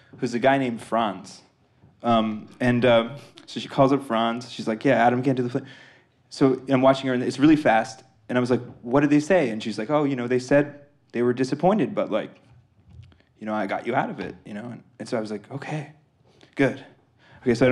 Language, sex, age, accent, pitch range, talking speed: English, male, 20-39, American, 115-145 Hz, 240 wpm